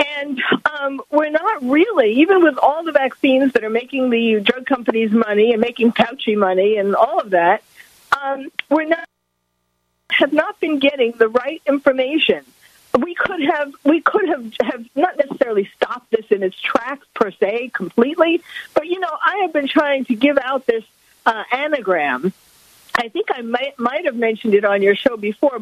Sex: female